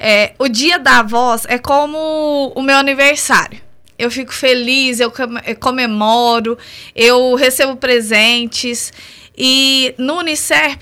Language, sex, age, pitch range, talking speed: Portuguese, female, 20-39, 240-280 Hz, 115 wpm